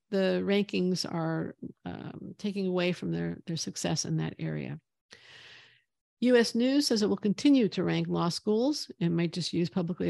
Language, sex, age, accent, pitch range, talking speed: English, female, 50-69, American, 165-205 Hz, 165 wpm